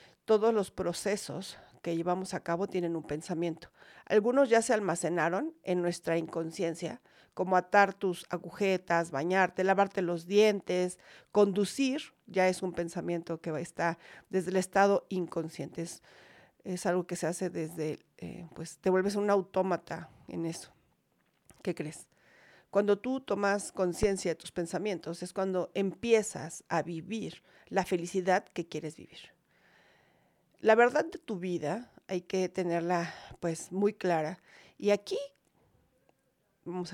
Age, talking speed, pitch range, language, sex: 50-69, 135 wpm, 170-205 Hz, Spanish, female